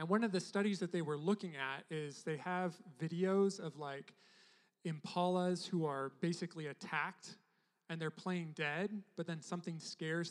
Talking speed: 170 wpm